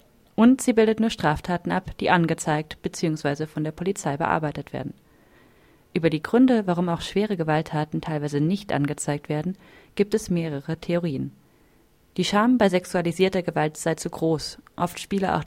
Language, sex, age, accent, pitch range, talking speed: German, female, 30-49, German, 155-190 Hz, 155 wpm